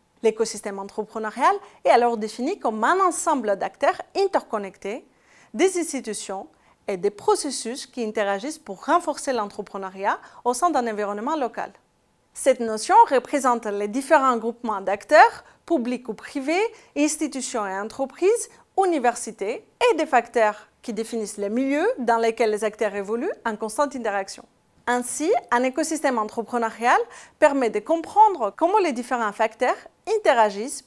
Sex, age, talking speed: female, 40-59, 130 wpm